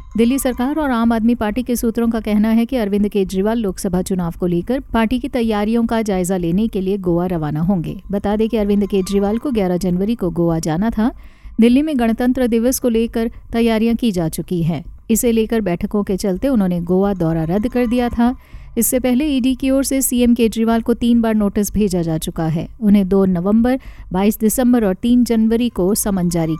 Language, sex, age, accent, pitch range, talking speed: Hindi, female, 50-69, native, 185-235 Hz, 205 wpm